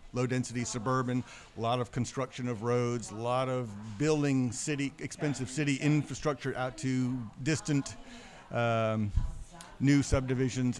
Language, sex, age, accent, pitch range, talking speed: English, male, 50-69, American, 115-130 Hz, 120 wpm